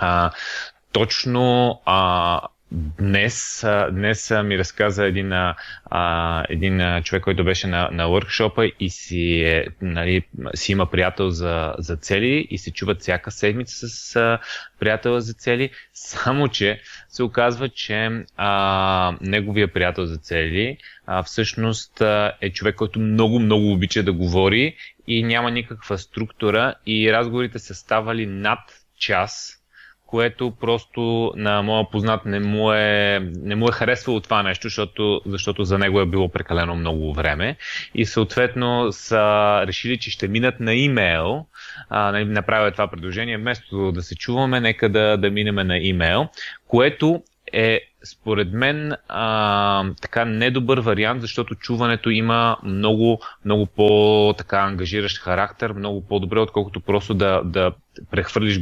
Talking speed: 140 wpm